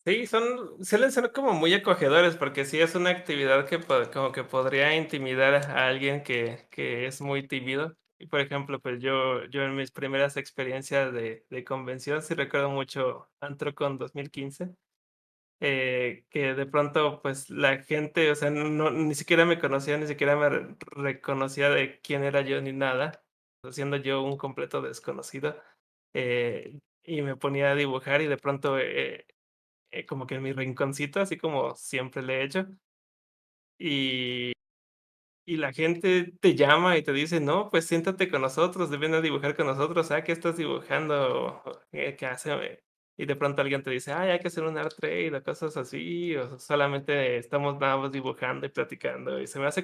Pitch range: 135-160 Hz